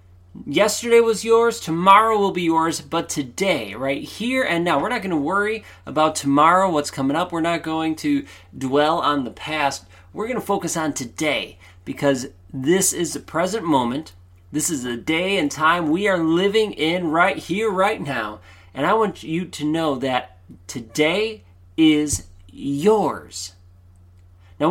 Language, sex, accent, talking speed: English, male, American, 165 wpm